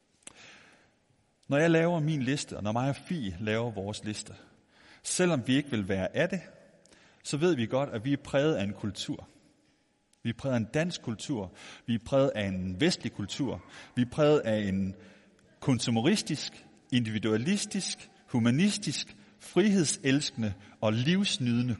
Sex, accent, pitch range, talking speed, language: male, native, 115-160 Hz, 155 wpm, Danish